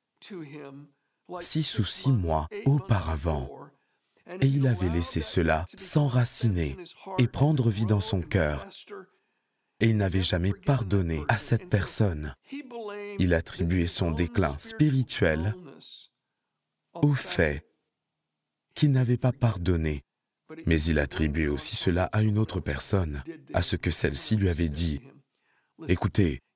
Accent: French